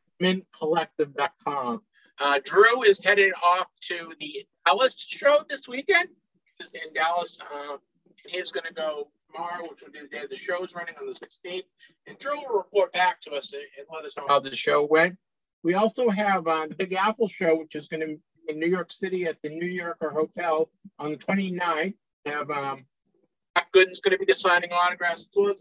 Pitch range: 160-205 Hz